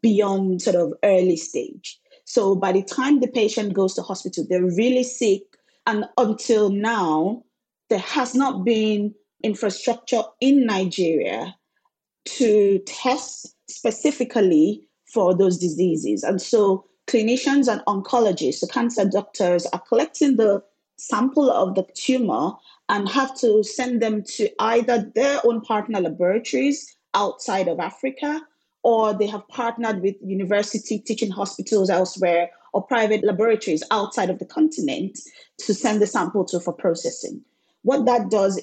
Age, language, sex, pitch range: 30-49, English, female, 195-250 Hz